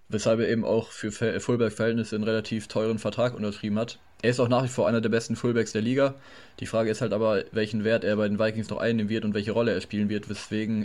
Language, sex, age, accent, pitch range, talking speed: German, male, 20-39, German, 110-125 Hz, 250 wpm